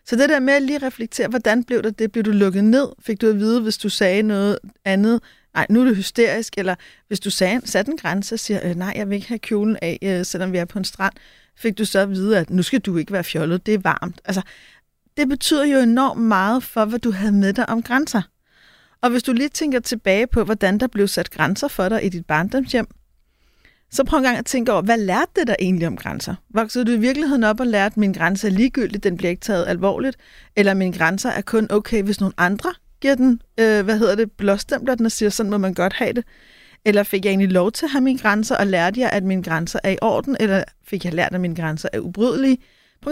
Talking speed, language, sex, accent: 250 wpm, Danish, female, native